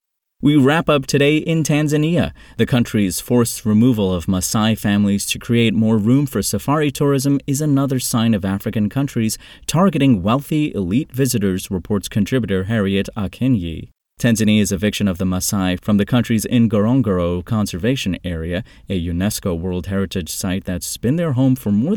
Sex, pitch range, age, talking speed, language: male, 95-130 Hz, 30-49, 155 wpm, English